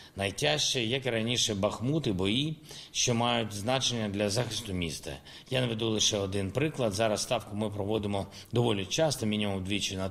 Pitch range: 105-135 Hz